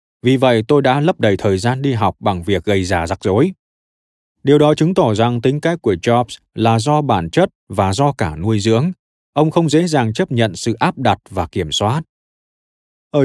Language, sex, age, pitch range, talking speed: Vietnamese, male, 20-39, 95-145 Hz, 215 wpm